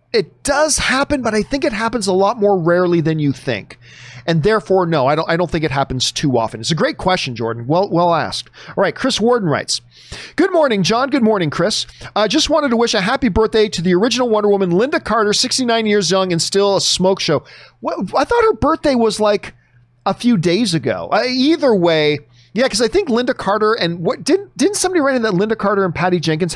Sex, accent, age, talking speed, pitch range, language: male, American, 40-59, 230 wpm, 155-235 Hz, English